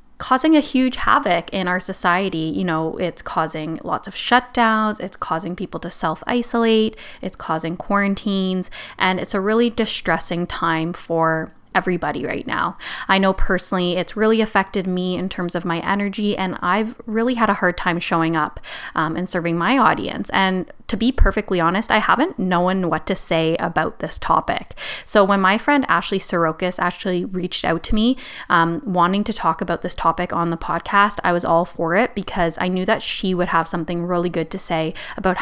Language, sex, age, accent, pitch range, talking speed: English, female, 10-29, American, 175-215 Hz, 190 wpm